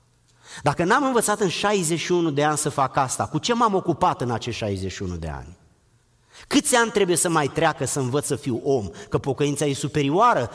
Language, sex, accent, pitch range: Romanian, male, native, 125-185 Hz